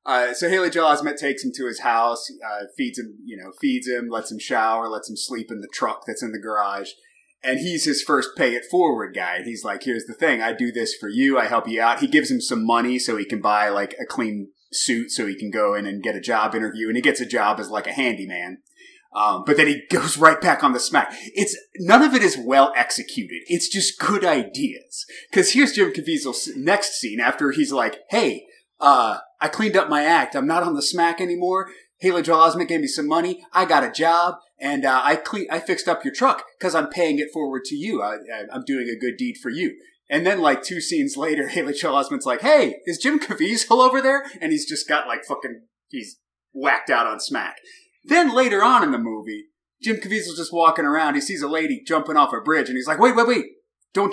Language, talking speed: English, 240 wpm